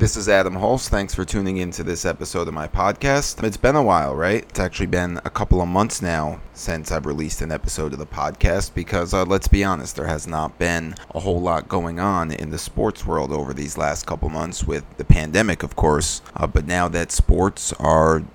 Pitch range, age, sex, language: 80-95 Hz, 30-49, male, English